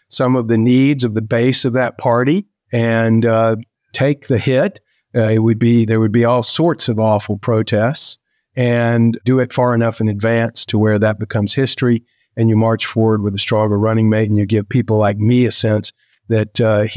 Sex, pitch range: male, 110-135 Hz